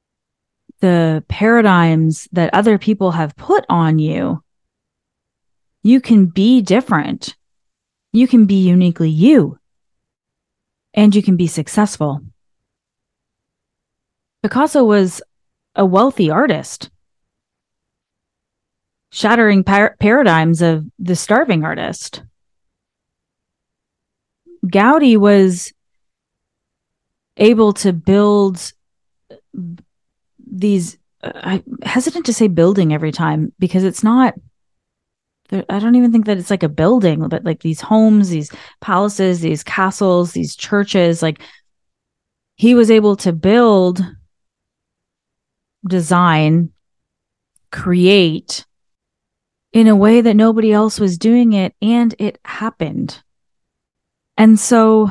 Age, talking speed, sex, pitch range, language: 30-49, 100 wpm, female, 165-220 Hz, English